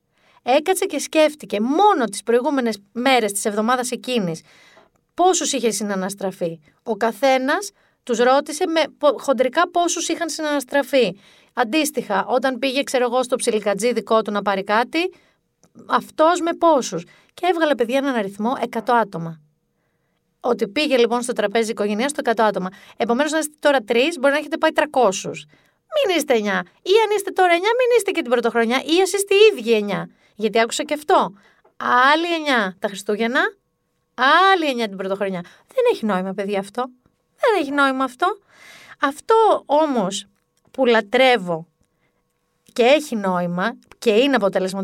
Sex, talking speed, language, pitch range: female, 150 wpm, Greek, 205-295 Hz